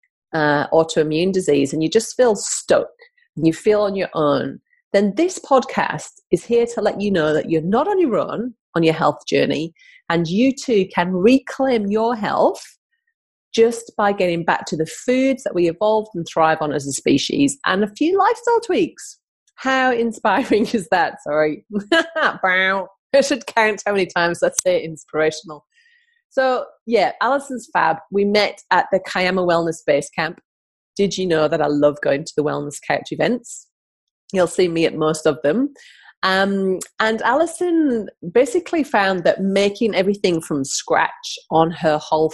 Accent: British